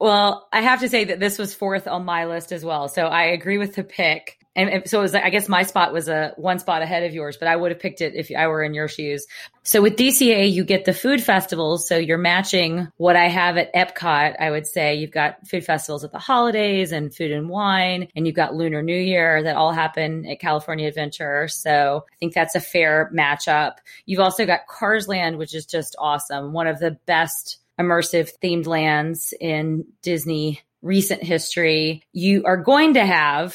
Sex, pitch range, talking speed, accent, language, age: female, 155-190 Hz, 215 wpm, American, English, 20-39